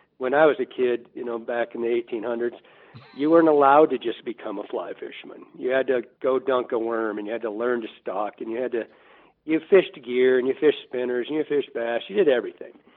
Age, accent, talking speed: 50-69, American, 245 wpm